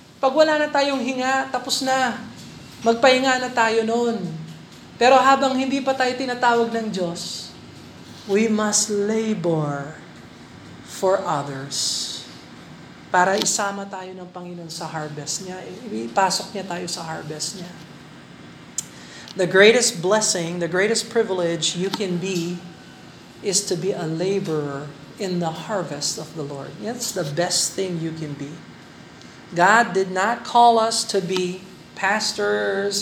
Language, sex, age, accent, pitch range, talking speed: Filipino, male, 40-59, native, 175-235 Hz, 130 wpm